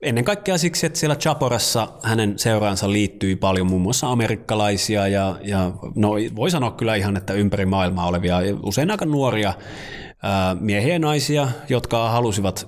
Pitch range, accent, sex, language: 95-120 Hz, native, male, Finnish